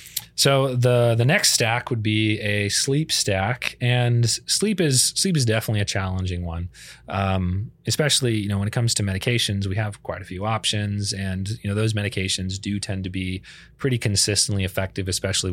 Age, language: 30-49, English